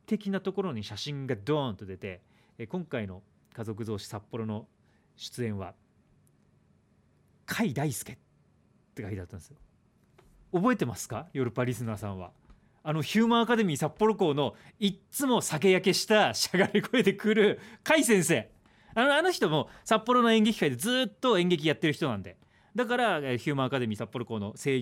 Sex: male